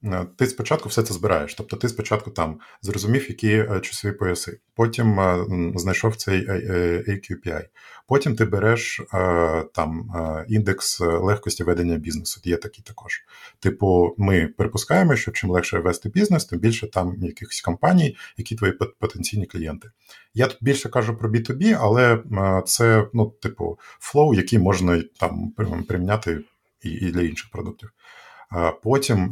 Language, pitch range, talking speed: Ukrainian, 90-115 Hz, 135 wpm